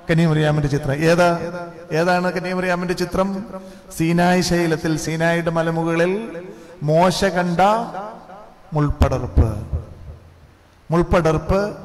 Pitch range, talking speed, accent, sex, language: 155-210 Hz, 75 wpm, native, male, Malayalam